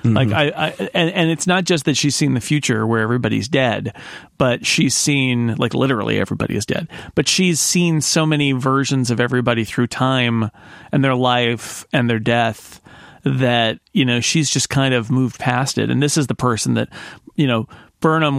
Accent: American